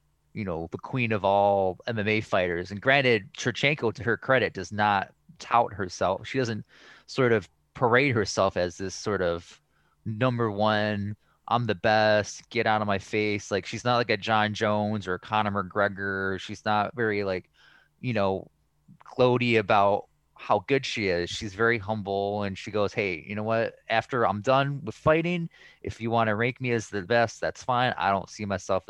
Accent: American